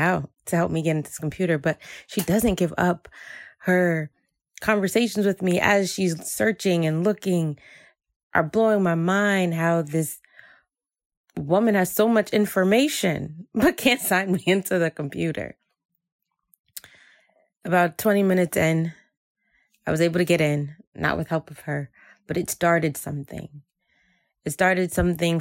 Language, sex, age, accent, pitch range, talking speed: English, female, 20-39, American, 155-180 Hz, 145 wpm